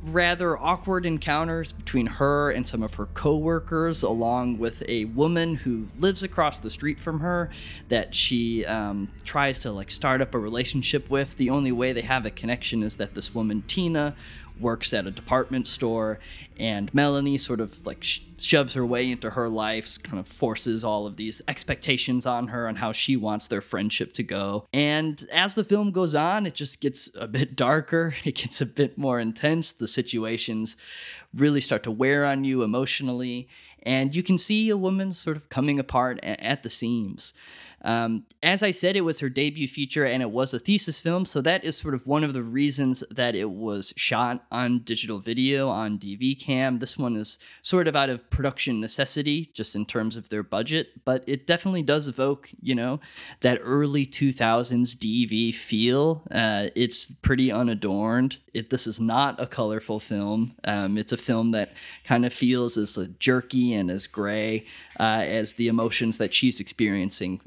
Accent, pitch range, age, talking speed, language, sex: American, 110-145 Hz, 20-39, 185 wpm, English, male